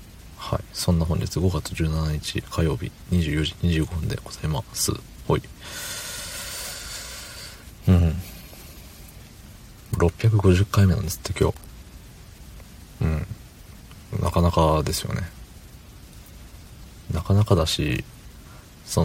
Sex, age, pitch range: male, 40-59, 80-105 Hz